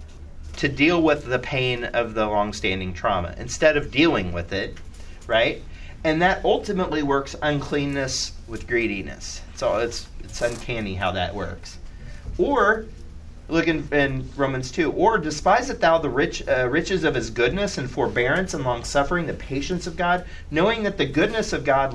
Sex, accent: male, American